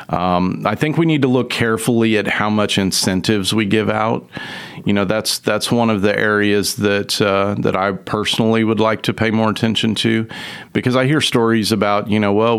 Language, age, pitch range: English, 40-59, 100-110 Hz